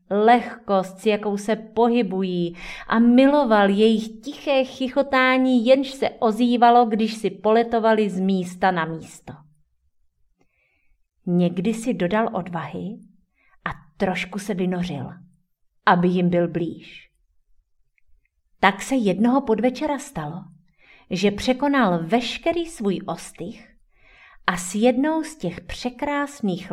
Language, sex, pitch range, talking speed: Czech, female, 175-225 Hz, 110 wpm